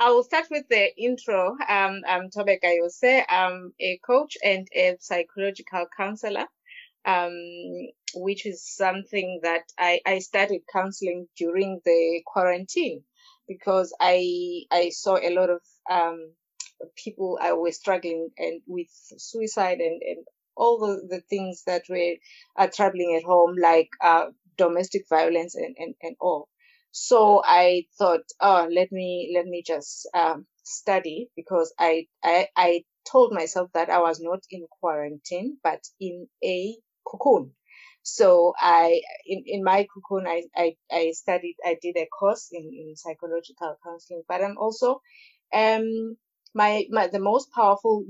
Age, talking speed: 20-39, 150 wpm